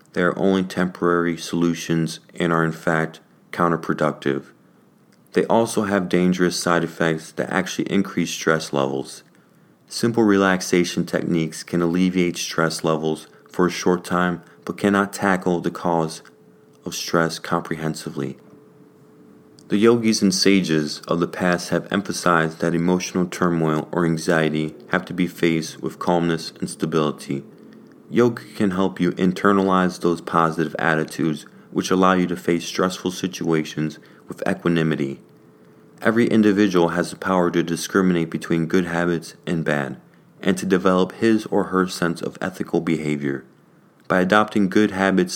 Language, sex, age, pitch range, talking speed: English, male, 30-49, 80-95 Hz, 140 wpm